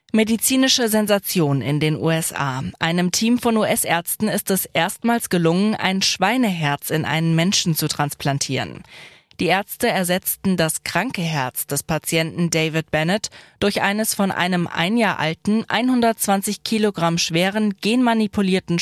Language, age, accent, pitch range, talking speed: German, 20-39, German, 160-215 Hz, 130 wpm